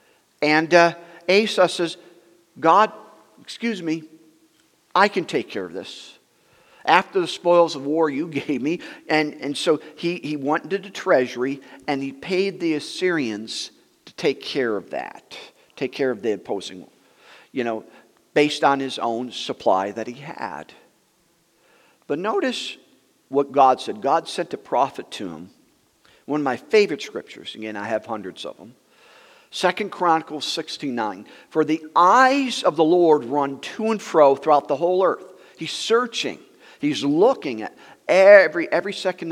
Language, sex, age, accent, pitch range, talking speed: English, male, 50-69, American, 145-225 Hz, 155 wpm